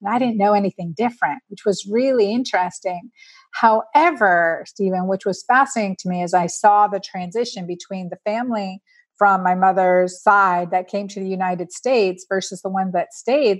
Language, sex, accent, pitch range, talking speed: English, female, American, 180-210 Hz, 170 wpm